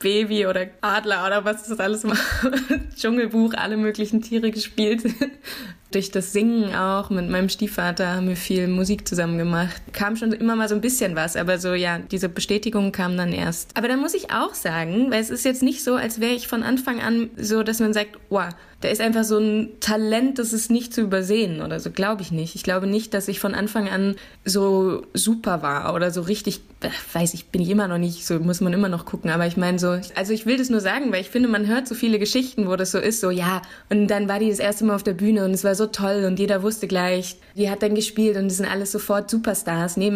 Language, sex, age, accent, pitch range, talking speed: German, female, 20-39, German, 185-220 Hz, 240 wpm